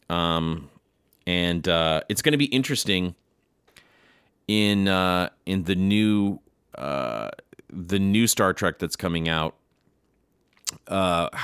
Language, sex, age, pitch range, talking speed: English, male, 30-49, 80-100 Hz, 115 wpm